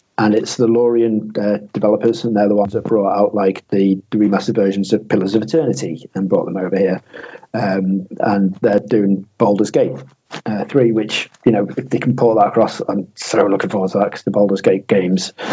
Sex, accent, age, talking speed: male, British, 40-59, 210 wpm